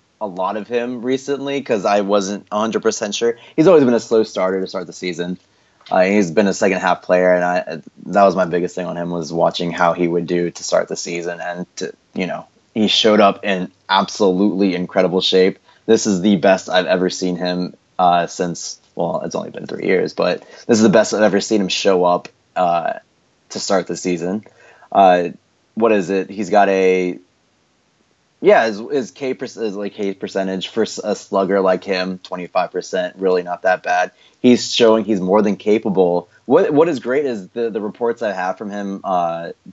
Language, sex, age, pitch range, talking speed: English, male, 20-39, 90-110 Hz, 200 wpm